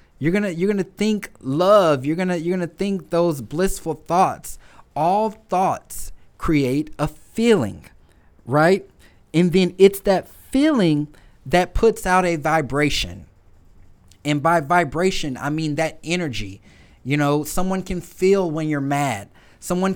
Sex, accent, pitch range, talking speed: male, American, 135-190 Hz, 150 wpm